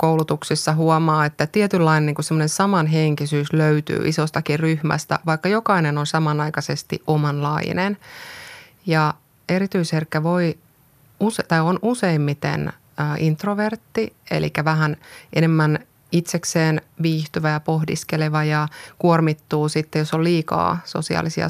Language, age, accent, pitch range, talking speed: Finnish, 20-39, native, 155-170 Hz, 100 wpm